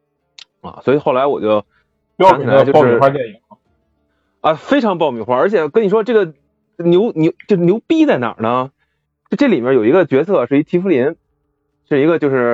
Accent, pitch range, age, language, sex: native, 105-155 Hz, 20-39, Chinese, male